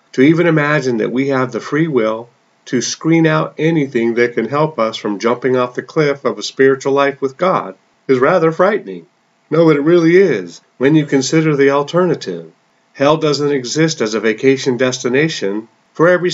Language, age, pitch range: English, 50-69, 120-160 Hz